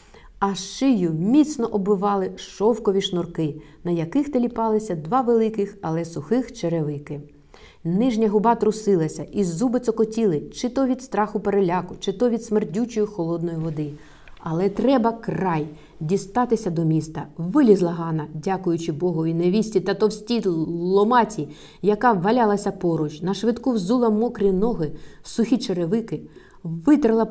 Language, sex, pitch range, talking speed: Ukrainian, female, 170-230 Hz, 125 wpm